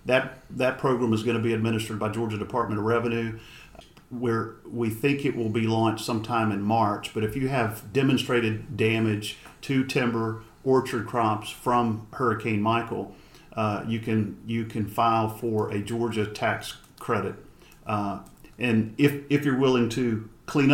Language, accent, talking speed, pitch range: English, American, 160 wpm, 110-125 Hz